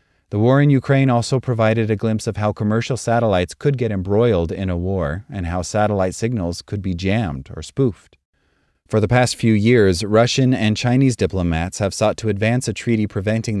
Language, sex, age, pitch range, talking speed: English, male, 30-49, 90-115 Hz, 190 wpm